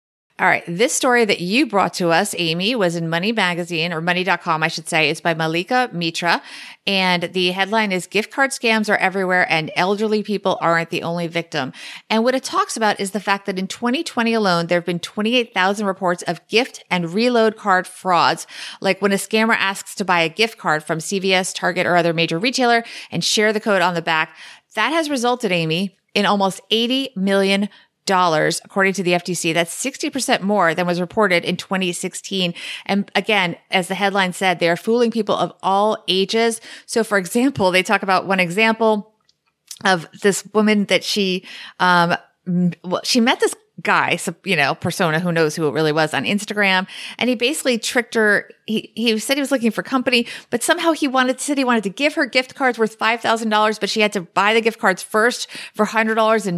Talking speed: 205 wpm